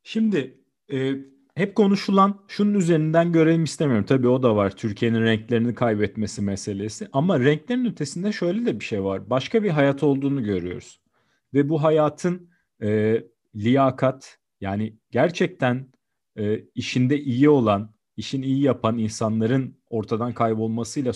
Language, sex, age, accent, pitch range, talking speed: Turkish, male, 40-59, native, 115-165 Hz, 130 wpm